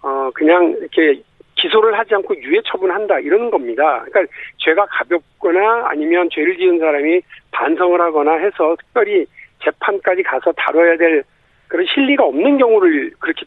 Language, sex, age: Korean, male, 50-69